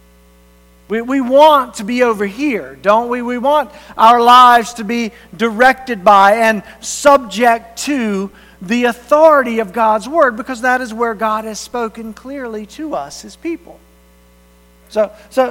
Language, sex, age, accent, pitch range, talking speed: English, male, 50-69, American, 210-270 Hz, 150 wpm